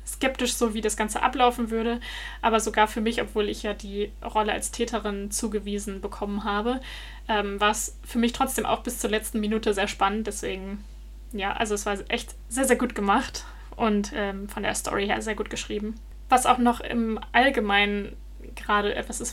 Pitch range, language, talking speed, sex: 210-235 Hz, German, 190 wpm, female